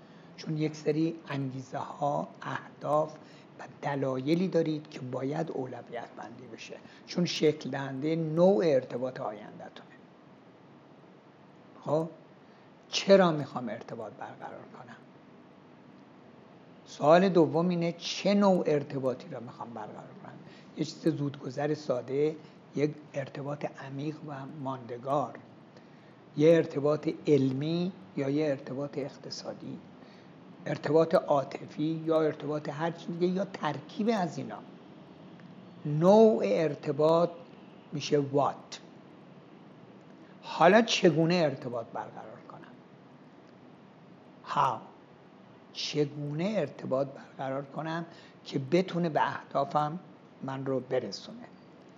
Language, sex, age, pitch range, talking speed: Persian, male, 60-79, 145-170 Hz, 95 wpm